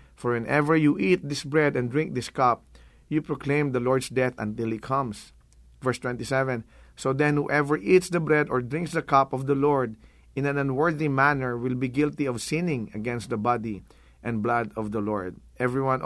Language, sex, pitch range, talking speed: English, male, 115-145 Hz, 190 wpm